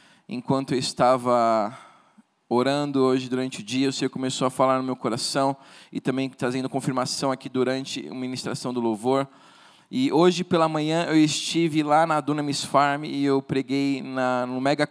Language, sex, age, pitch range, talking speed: Portuguese, male, 20-39, 135-160 Hz, 170 wpm